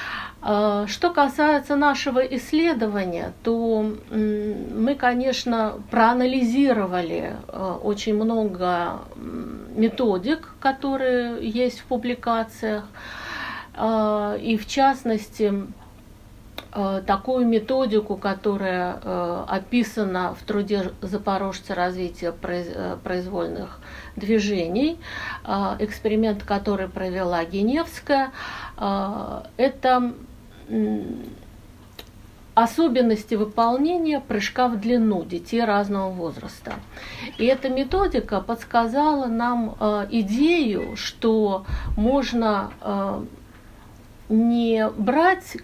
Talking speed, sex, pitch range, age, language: 70 wpm, female, 195-245 Hz, 60-79, Russian